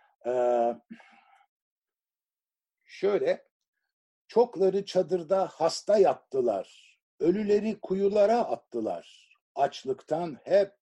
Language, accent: Turkish, native